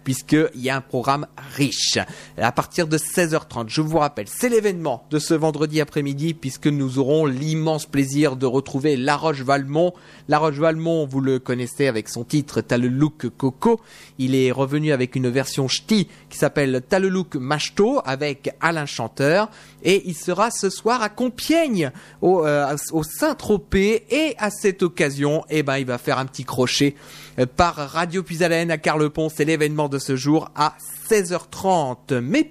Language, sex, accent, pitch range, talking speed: French, male, French, 140-170 Hz, 175 wpm